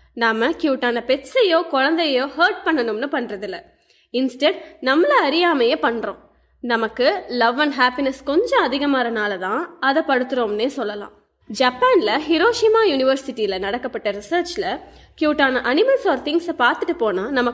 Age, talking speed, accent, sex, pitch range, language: 20-39, 85 wpm, native, female, 240-335 Hz, Tamil